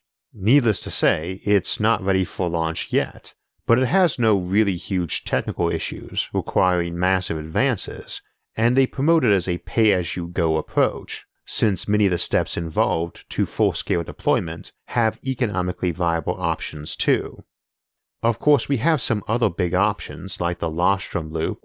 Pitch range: 85-110 Hz